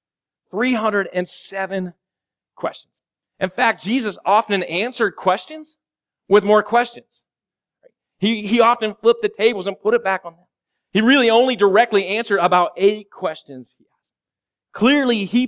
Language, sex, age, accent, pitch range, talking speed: English, male, 30-49, American, 175-220 Hz, 135 wpm